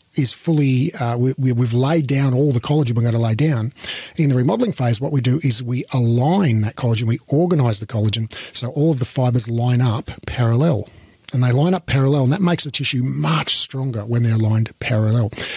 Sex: male